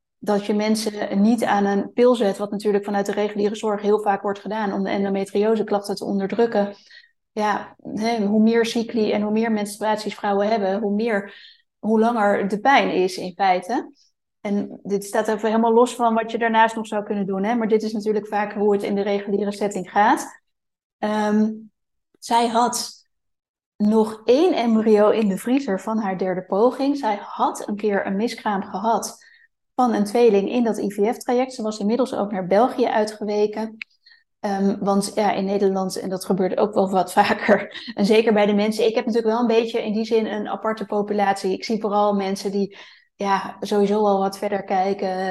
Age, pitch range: 20-39, 200-225 Hz